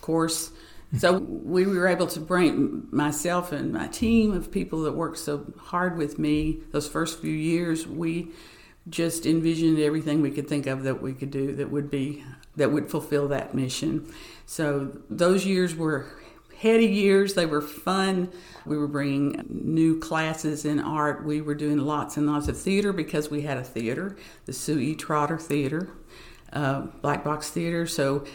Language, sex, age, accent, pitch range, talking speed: English, female, 50-69, American, 145-180 Hz, 175 wpm